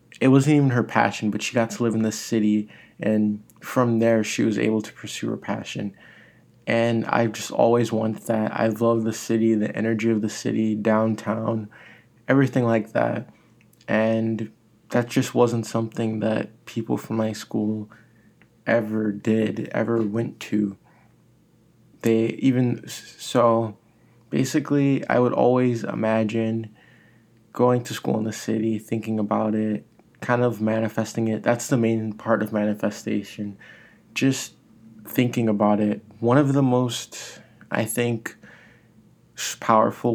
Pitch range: 110-115 Hz